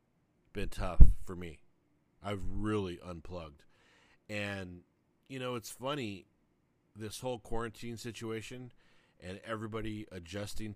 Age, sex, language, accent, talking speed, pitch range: 40-59, male, English, American, 105 wpm, 90-110 Hz